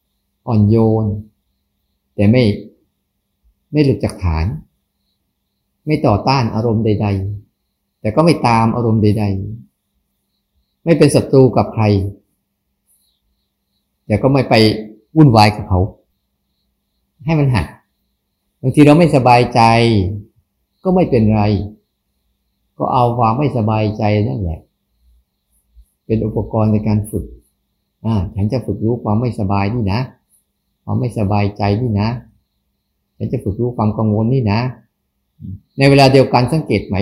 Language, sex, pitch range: Thai, male, 100-130 Hz